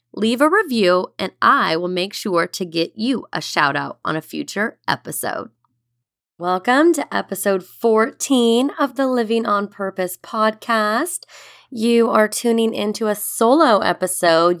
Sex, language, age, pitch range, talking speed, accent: female, English, 20-39, 165-230 Hz, 140 wpm, American